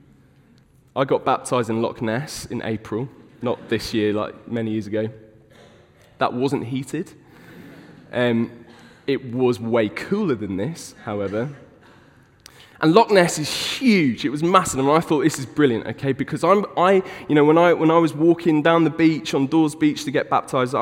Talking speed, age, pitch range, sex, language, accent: 175 wpm, 20-39, 125-165 Hz, male, English, British